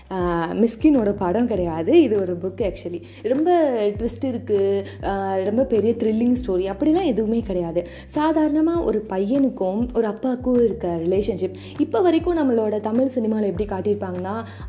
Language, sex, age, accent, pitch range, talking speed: Tamil, female, 20-39, native, 195-270 Hz, 125 wpm